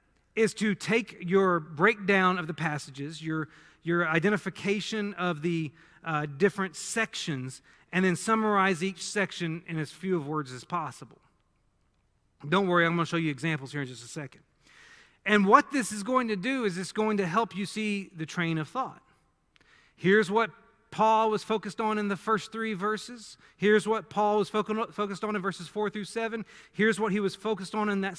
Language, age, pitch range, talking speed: English, 40-59, 170-215 Hz, 190 wpm